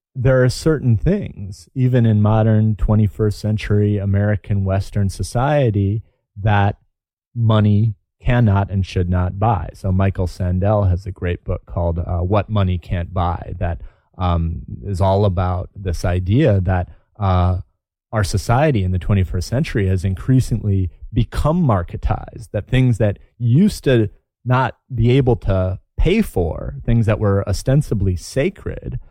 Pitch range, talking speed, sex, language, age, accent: 95-120 Hz, 140 wpm, male, English, 30-49, American